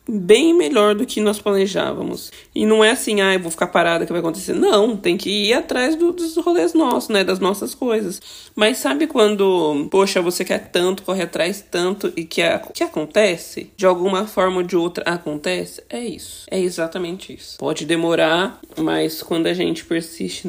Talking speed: 190 wpm